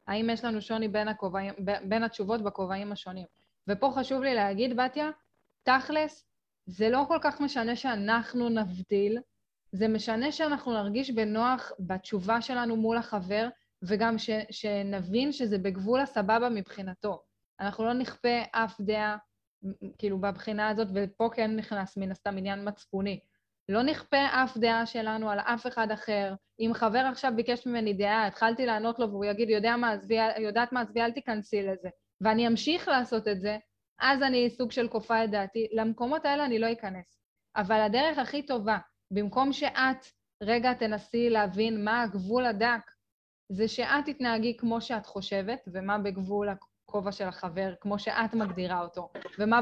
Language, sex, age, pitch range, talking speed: Hebrew, female, 10-29, 205-240 Hz, 155 wpm